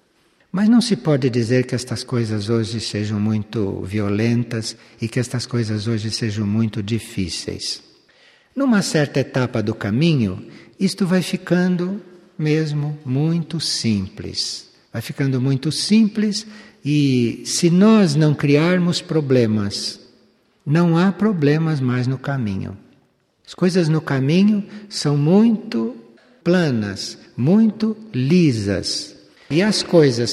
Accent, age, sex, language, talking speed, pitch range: Brazilian, 60-79, male, Portuguese, 115 wpm, 115-170 Hz